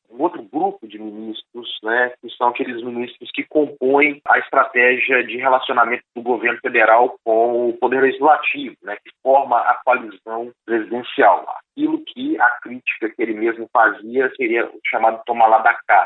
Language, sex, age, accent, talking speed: Portuguese, male, 40-59, Brazilian, 165 wpm